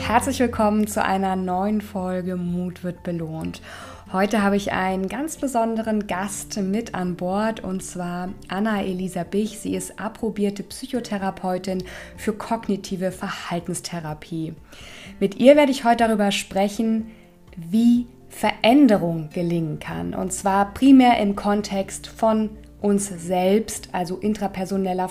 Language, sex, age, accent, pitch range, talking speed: German, female, 20-39, German, 185-220 Hz, 125 wpm